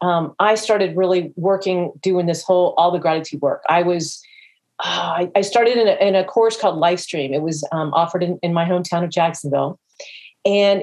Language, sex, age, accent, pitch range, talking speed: English, female, 40-59, American, 180-225 Hz, 200 wpm